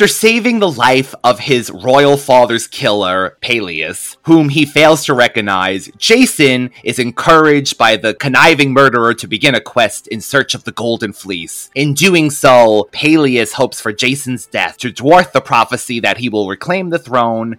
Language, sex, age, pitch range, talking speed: English, male, 30-49, 110-150 Hz, 170 wpm